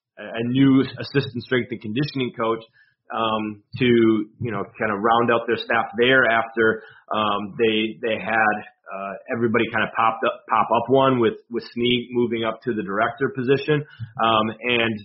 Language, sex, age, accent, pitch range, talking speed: English, male, 30-49, American, 110-125 Hz, 170 wpm